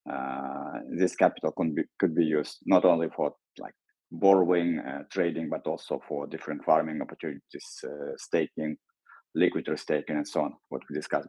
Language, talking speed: English, 165 wpm